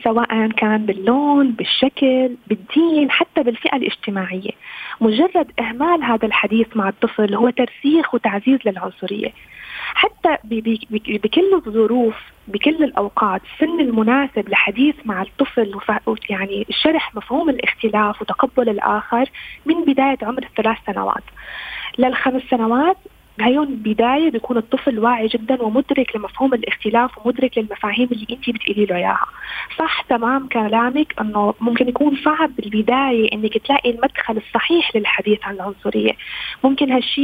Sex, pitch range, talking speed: female, 215-270 Hz, 120 wpm